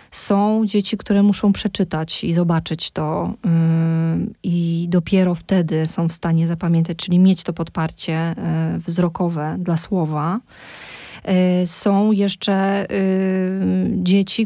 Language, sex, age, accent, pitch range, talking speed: Polish, female, 20-39, native, 180-210 Hz, 105 wpm